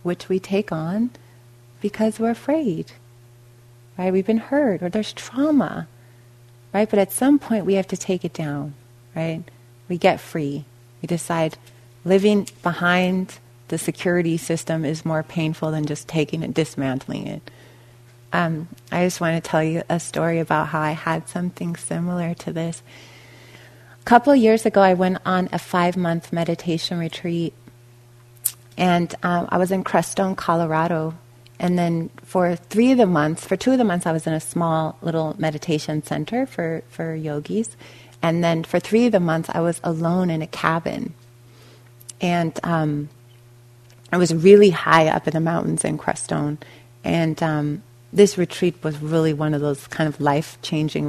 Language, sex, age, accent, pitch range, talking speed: English, female, 30-49, American, 135-180 Hz, 165 wpm